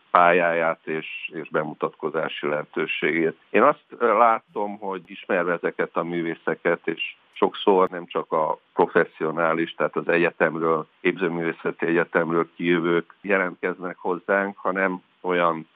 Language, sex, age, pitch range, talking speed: Hungarian, male, 50-69, 85-100 Hz, 105 wpm